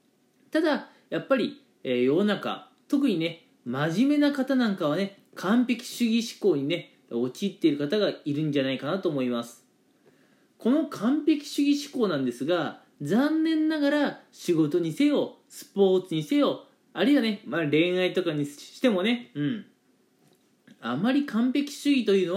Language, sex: Japanese, male